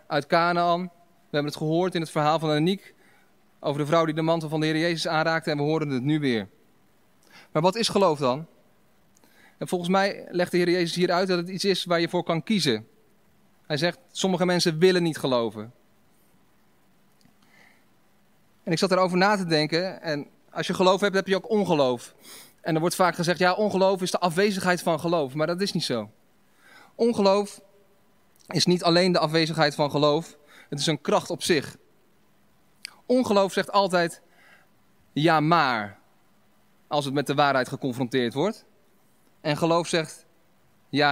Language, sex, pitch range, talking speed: Dutch, male, 155-185 Hz, 175 wpm